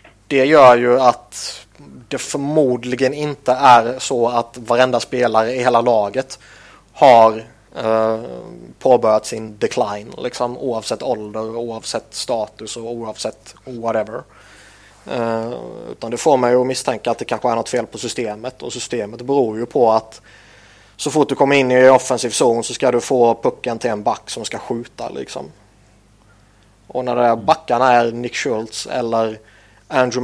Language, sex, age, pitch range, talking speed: Swedish, male, 20-39, 110-125 Hz, 155 wpm